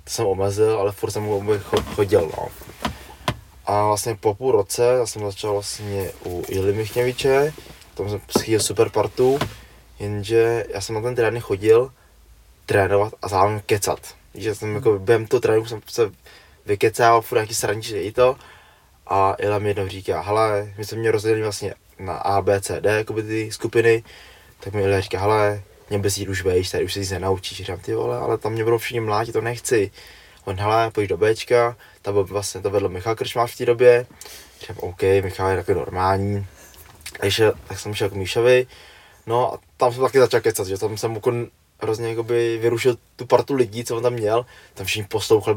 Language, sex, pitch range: Czech, male, 100-115 Hz